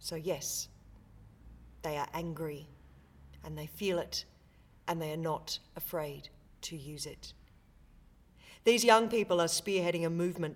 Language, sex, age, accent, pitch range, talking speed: English, female, 40-59, Australian, 150-180 Hz, 135 wpm